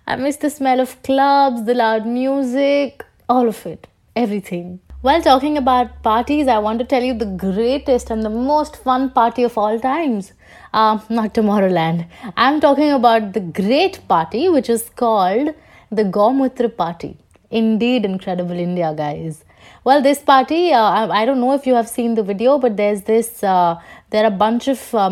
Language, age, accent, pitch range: English, 20-39, Indian, 215-275 Hz